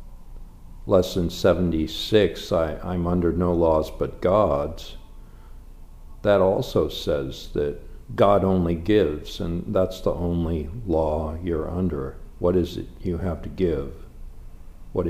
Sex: male